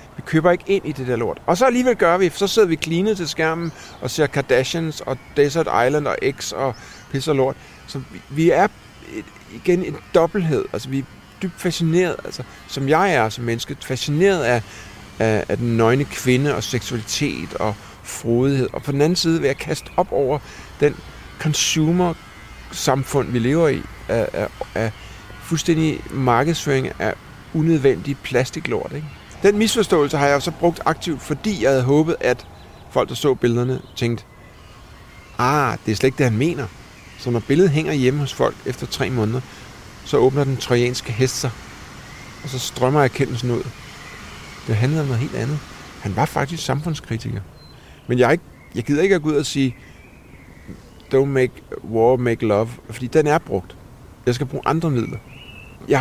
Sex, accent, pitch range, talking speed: male, native, 120-160 Hz, 180 wpm